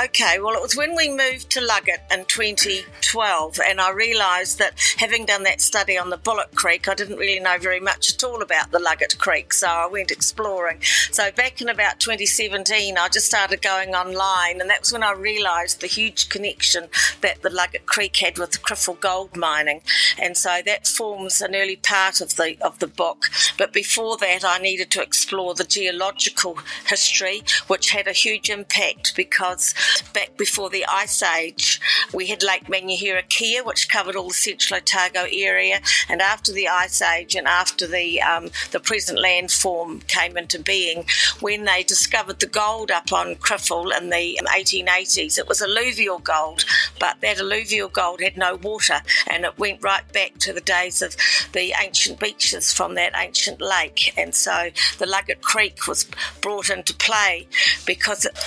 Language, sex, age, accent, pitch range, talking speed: English, female, 50-69, British, 180-210 Hz, 185 wpm